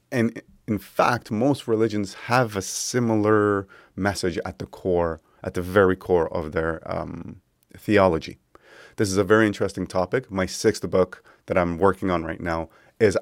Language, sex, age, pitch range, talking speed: English, male, 30-49, 90-105 Hz, 165 wpm